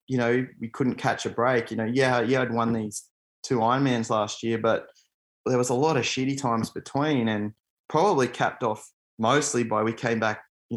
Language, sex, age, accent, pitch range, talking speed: English, male, 20-39, Australian, 110-130 Hz, 205 wpm